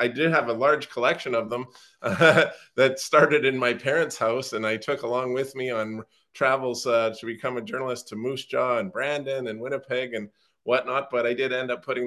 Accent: American